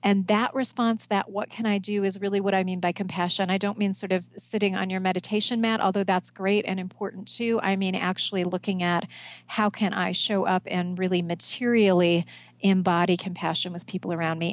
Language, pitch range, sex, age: English, 185-220 Hz, female, 40-59